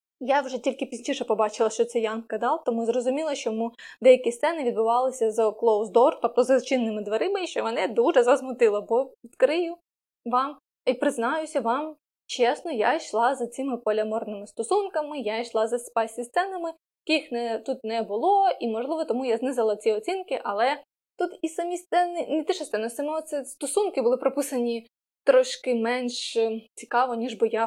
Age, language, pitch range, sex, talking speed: 20-39, Ukrainian, 230-305 Hz, female, 165 wpm